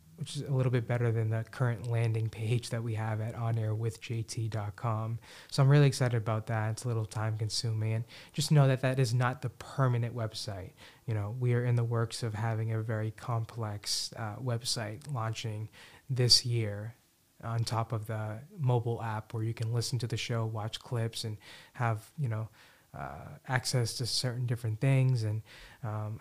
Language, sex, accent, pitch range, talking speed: English, male, American, 110-130 Hz, 185 wpm